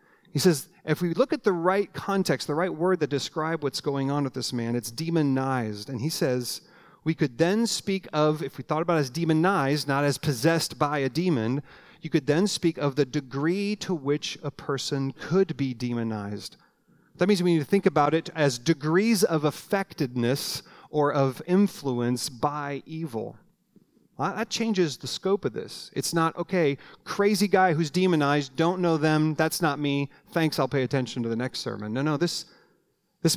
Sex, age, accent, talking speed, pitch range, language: male, 40-59, American, 190 wpm, 135-175 Hz, English